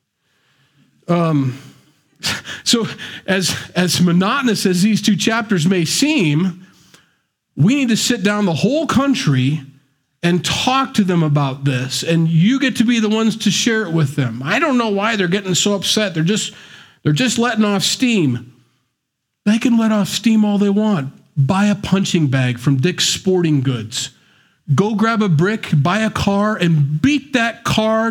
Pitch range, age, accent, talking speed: 150-210 Hz, 40-59, American, 170 wpm